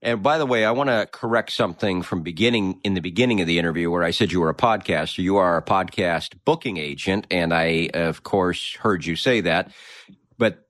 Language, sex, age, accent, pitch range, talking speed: English, male, 40-59, American, 95-130 Hz, 220 wpm